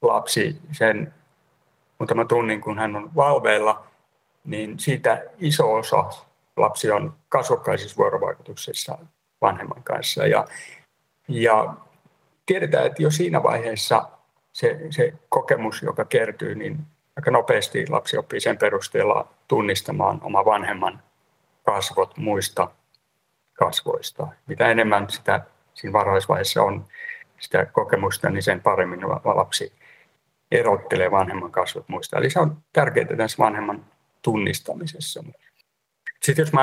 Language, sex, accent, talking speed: Finnish, male, native, 110 wpm